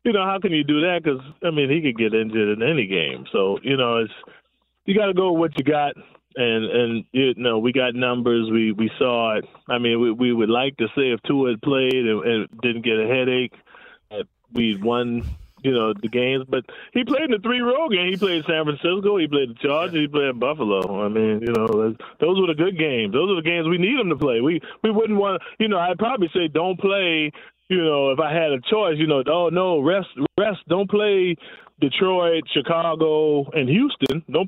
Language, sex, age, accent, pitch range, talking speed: English, male, 20-39, American, 125-175 Hz, 235 wpm